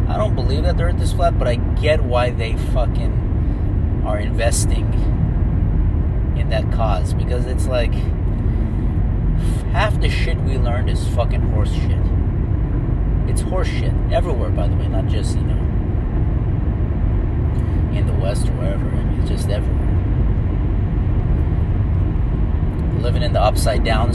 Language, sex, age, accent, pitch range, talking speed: English, male, 30-49, American, 75-105 Hz, 140 wpm